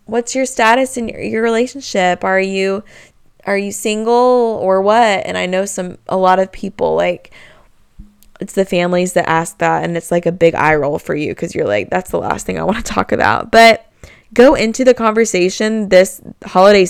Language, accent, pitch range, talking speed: English, American, 170-210 Hz, 200 wpm